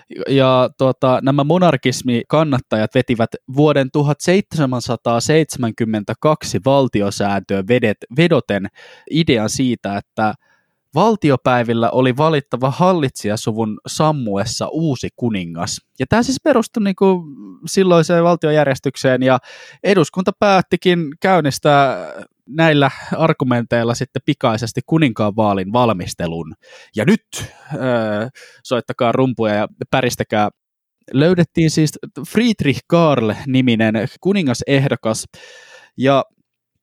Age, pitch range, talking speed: 20-39, 115-160 Hz, 85 wpm